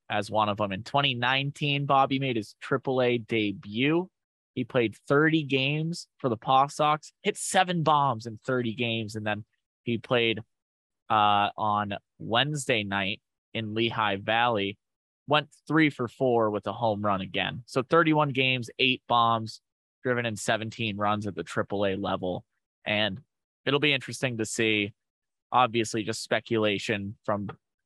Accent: American